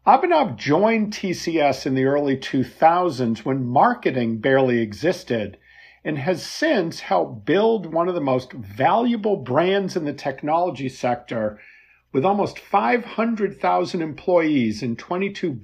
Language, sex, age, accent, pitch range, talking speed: English, male, 50-69, American, 125-195 Hz, 125 wpm